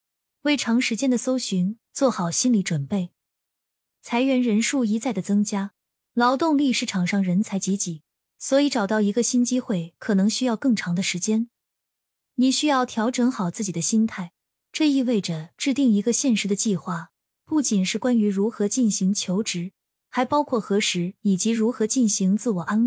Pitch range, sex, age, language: 195-250 Hz, female, 20-39, Chinese